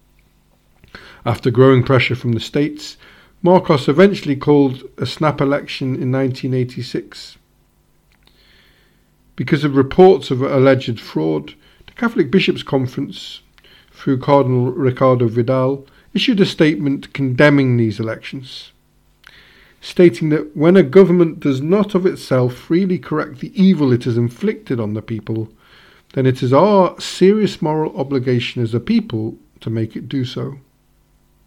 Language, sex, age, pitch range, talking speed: English, male, 50-69, 125-170 Hz, 130 wpm